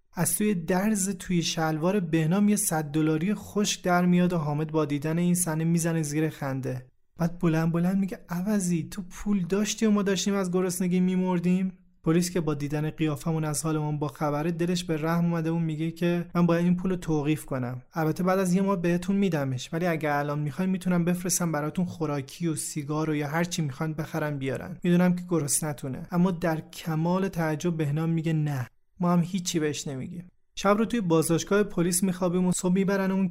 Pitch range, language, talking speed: 150-180 Hz, Persian, 185 wpm